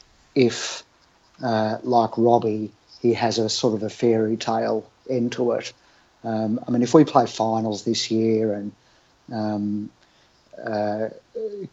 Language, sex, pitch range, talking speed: English, male, 105-120 Hz, 140 wpm